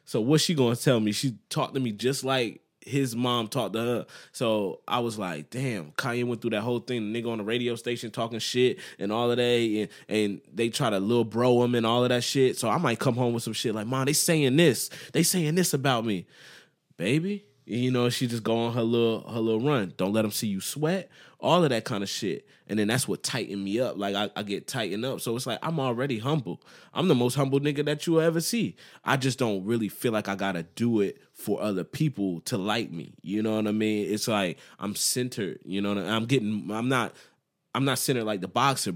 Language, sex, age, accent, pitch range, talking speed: English, male, 20-39, American, 100-130 Hz, 255 wpm